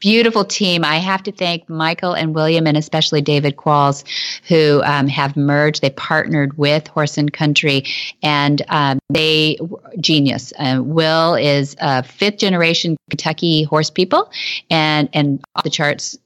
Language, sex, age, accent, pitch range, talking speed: English, female, 30-49, American, 145-170 Hz, 155 wpm